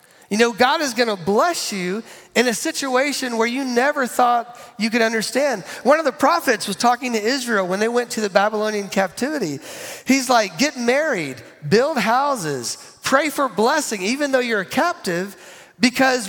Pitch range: 205-260 Hz